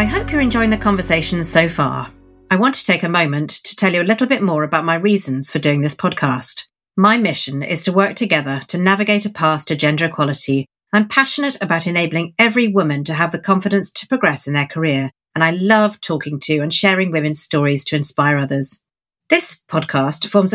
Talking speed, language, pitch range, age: 205 wpm, English, 145-200 Hz, 40-59